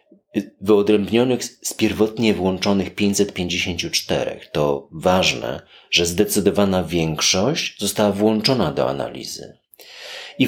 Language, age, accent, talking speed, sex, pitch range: Polish, 30-49, native, 85 wpm, male, 90-110 Hz